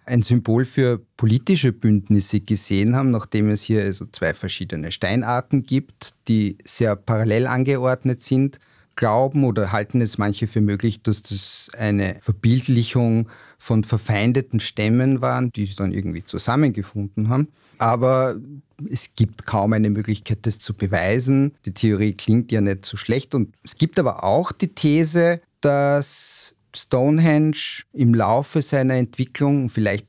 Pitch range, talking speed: 105-130 Hz, 140 wpm